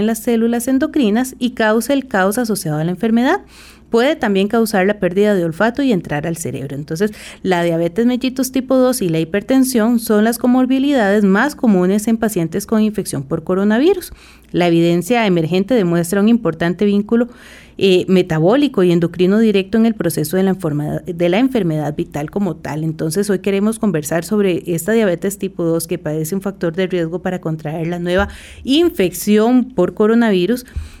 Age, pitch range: 30-49, 170-225 Hz